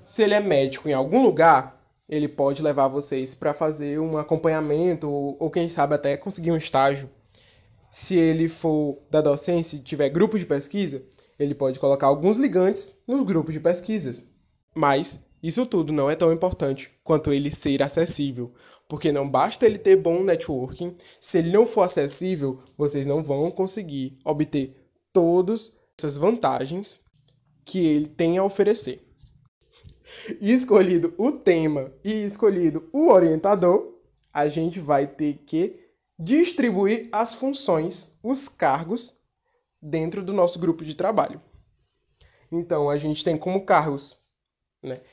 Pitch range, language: 145-190 Hz, Portuguese